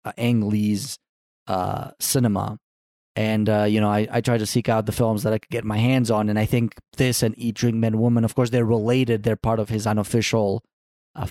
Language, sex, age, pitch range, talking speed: English, male, 30-49, 110-135 Hz, 230 wpm